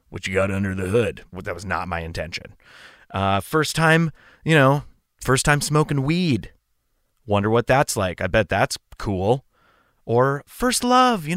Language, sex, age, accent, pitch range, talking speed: English, male, 30-49, American, 105-150 Hz, 170 wpm